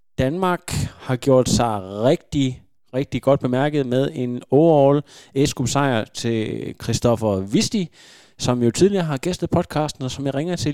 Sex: male